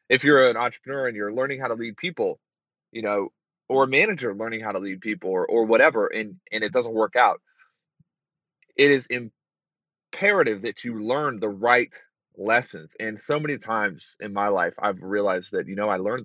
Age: 20-39